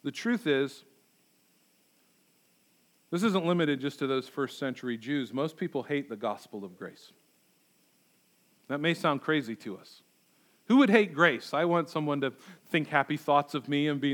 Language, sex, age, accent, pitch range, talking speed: English, male, 40-59, American, 140-205 Hz, 170 wpm